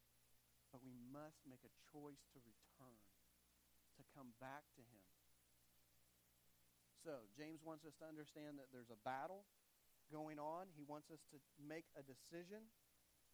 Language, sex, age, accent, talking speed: English, male, 40-59, American, 145 wpm